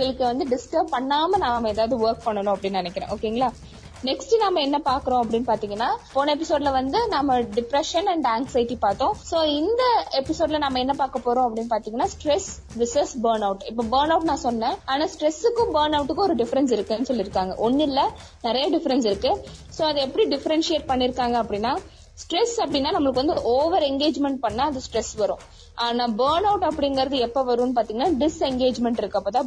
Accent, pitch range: native, 235-305 Hz